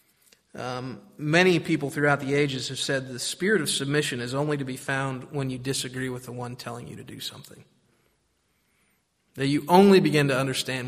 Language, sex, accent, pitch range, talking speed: English, male, American, 125-160 Hz, 190 wpm